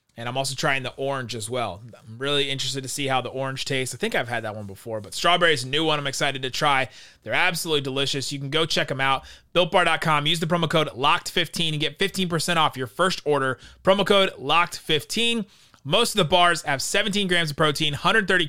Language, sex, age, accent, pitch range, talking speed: English, male, 30-49, American, 135-180 Hz, 225 wpm